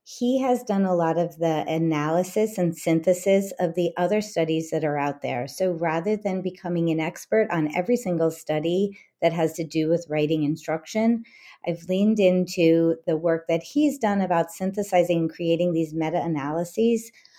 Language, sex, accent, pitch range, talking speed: English, female, American, 165-200 Hz, 170 wpm